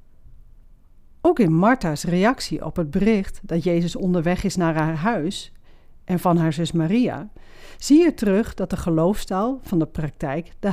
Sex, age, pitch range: female, 40-59, 160-225 Hz